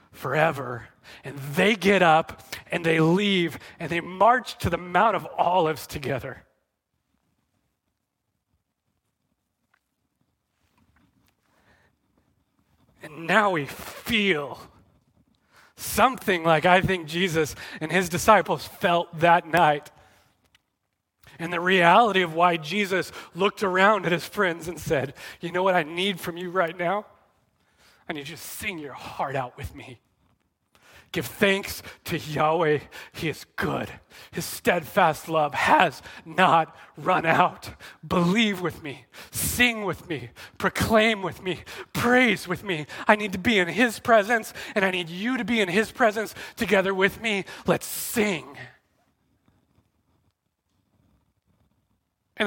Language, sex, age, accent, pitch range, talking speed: English, male, 30-49, American, 135-195 Hz, 130 wpm